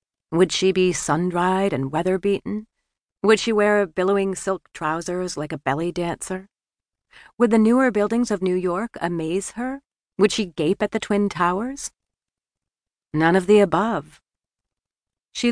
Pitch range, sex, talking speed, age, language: 155-215 Hz, female, 145 wpm, 40-59, English